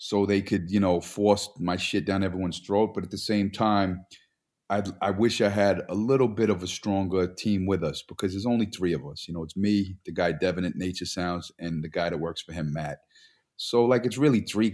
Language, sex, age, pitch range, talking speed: English, male, 30-49, 100-125 Hz, 240 wpm